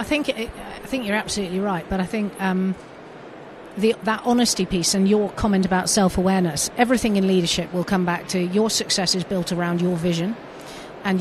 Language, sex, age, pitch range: English, female, 40-59, 185-215 Hz